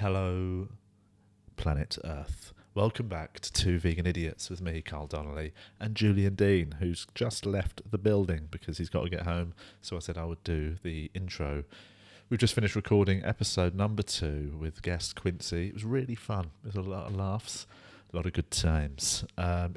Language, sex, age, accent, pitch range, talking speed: English, male, 30-49, British, 85-105 Hz, 180 wpm